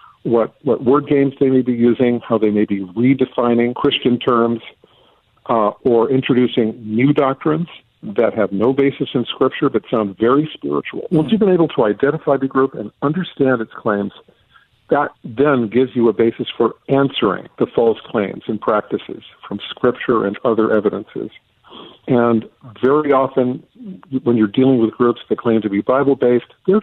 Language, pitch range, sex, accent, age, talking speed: English, 115-145 Hz, male, American, 50-69, 165 wpm